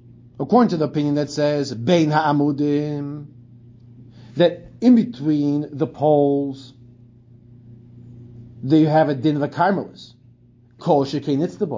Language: English